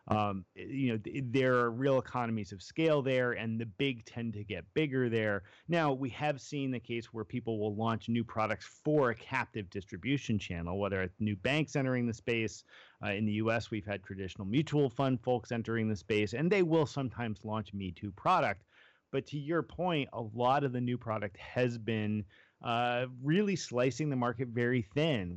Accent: American